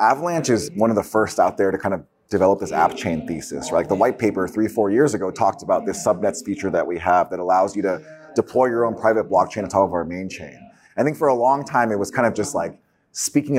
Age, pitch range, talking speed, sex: 30-49, 95-125 Hz, 265 wpm, male